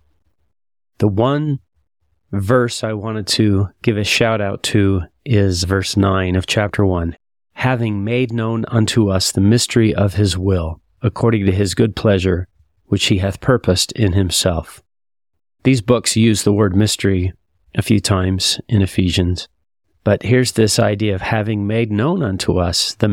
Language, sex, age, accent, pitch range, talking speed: English, male, 40-59, American, 90-110 Hz, 155 wpm